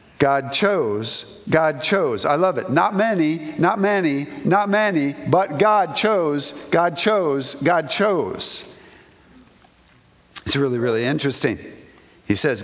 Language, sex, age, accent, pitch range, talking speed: English, male, 50-69, American, 130-165 Hz, 125 wpm